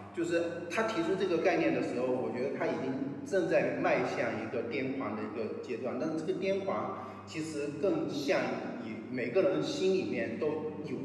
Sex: male